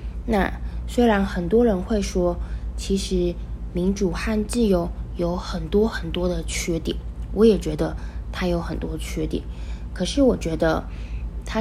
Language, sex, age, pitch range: Chinese, female, 20-39, 160-210 Hz